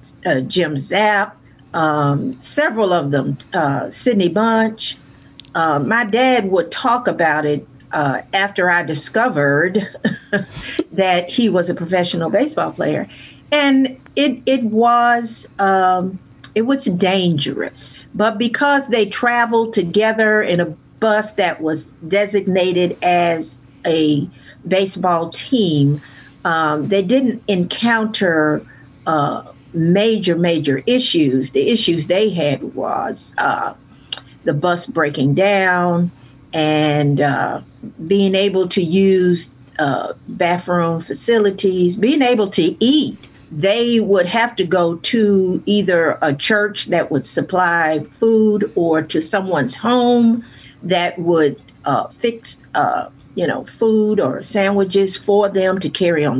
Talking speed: 120 wpm